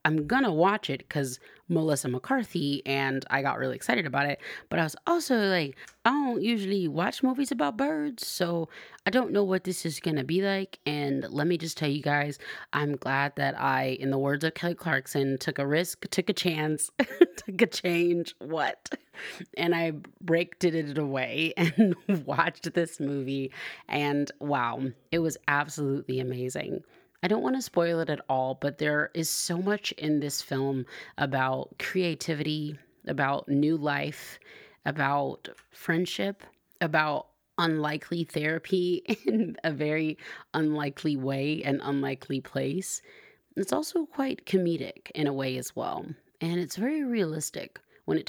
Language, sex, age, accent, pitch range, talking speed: English, female, 30-49, American, 140-180 Hz, 160 wpm